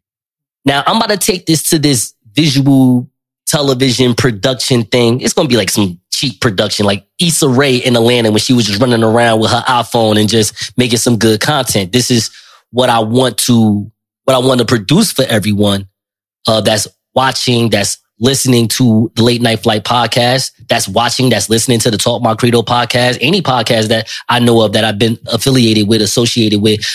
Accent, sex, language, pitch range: American, male, English, 110-135 Hz